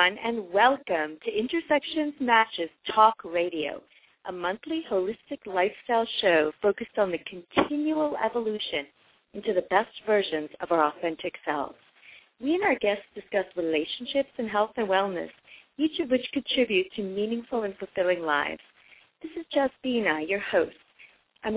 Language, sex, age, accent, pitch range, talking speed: English, female, 30-49, American, 175-235 Hz, 140 wpm